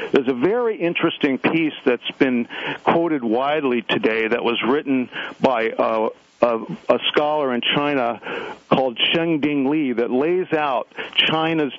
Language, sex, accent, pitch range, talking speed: English, male, American, 125-160 Hz, 135 wpm